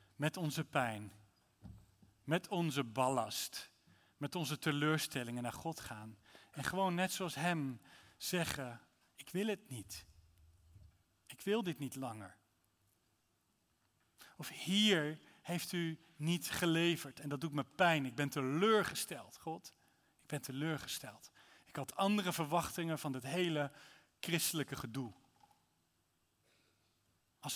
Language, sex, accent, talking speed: Dutch, male, Dutch, 120 wpm